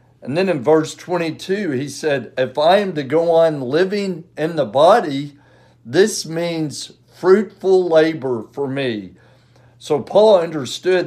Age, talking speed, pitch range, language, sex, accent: 60-79, 140 wpm, 130-175 Hz, English, male, American